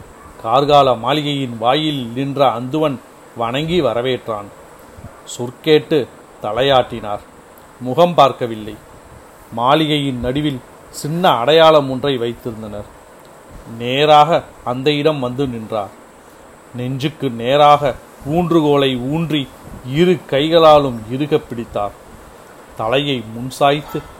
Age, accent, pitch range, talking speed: 40-59, native, 120-155 Hz, 75 wpm